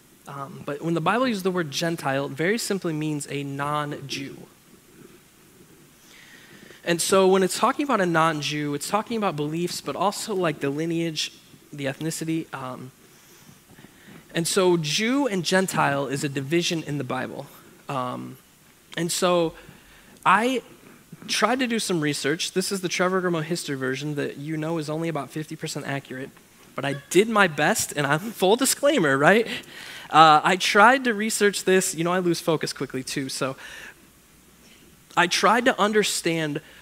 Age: 10-29